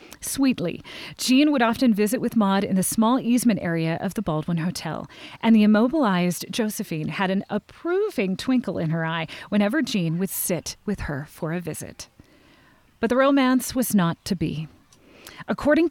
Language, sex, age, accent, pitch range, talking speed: English, female, 30-49, American, 170-245 Hz, 165 wpm